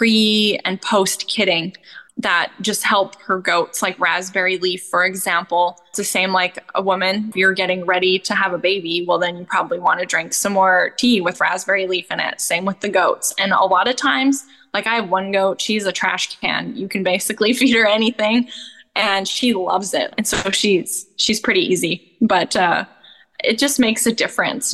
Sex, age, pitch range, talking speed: female, 10-29, 185-220 Hz, 205 wpm